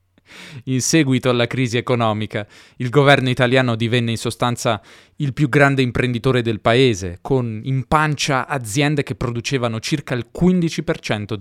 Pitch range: 110-135 Hz